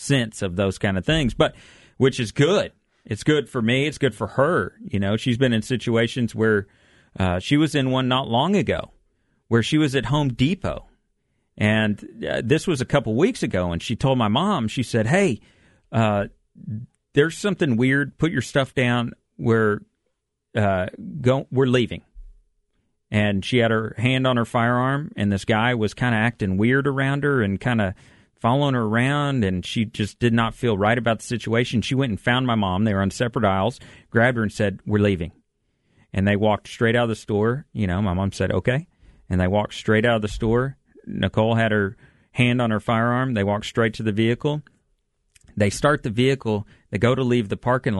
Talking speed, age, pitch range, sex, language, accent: 205 wpm, 40-59, 105-125 Hz, male, English, American